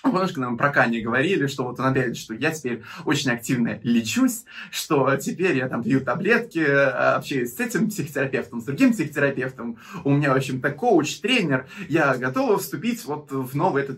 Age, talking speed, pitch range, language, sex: 20-39, 175 wpm, 145-245 Hz, Russian, male